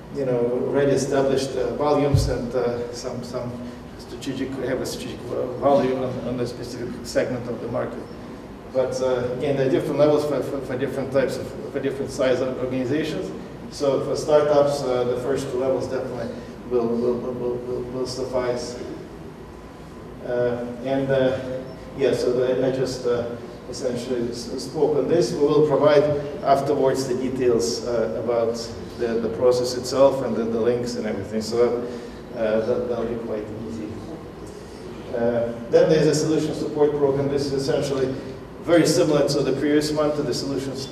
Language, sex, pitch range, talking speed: Russian, male, 120-140 Hz, 165 wpm